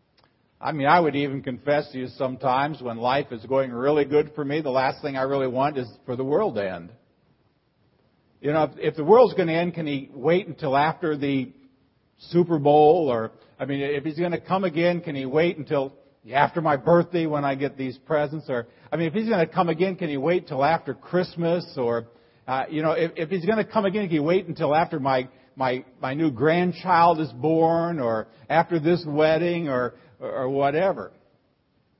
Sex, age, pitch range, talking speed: male, 50-69, 115-155 Hz, 210 wpm